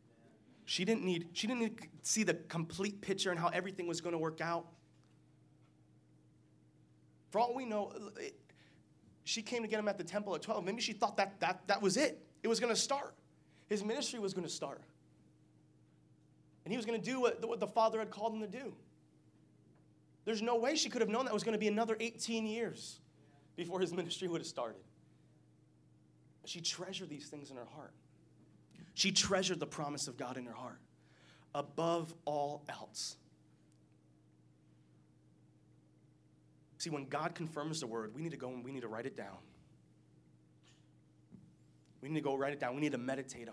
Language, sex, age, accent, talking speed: English, male, 30-49, American, 190 wpm